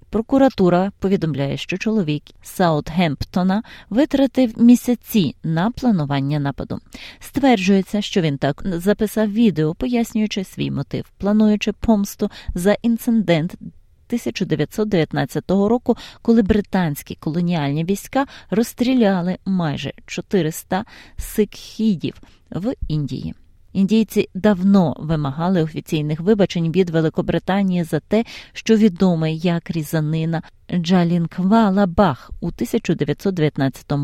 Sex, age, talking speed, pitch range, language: female, 20-39, 90 wpm, 160-210 Hz, Ukrainian